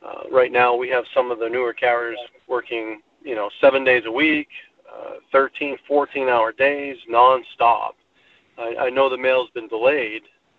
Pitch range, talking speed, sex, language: 115-150 Hz, 170 wpm, male, English